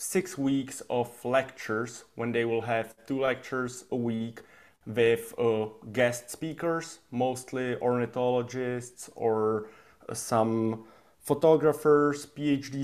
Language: English